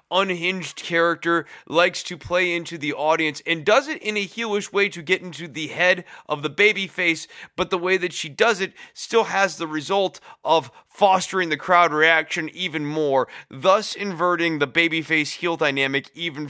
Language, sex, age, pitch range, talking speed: English, male, 20-39, 150-190 Hz, 175 wpm